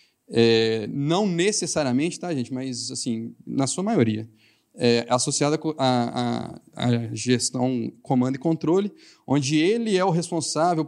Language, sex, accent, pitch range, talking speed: Portuguese, male, Brazilian, 125-170 Hz, 130 wpm